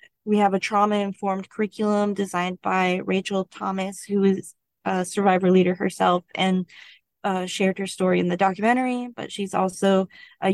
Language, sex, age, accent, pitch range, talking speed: English, female, 20-39, American, 180-200 Hz, 155 wpm